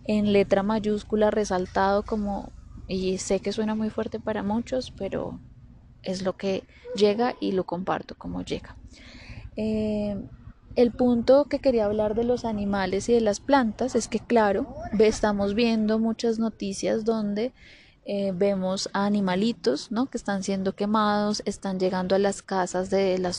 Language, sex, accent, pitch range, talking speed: Spanish, female, Colombian, 195-225 Hz, 150 wpm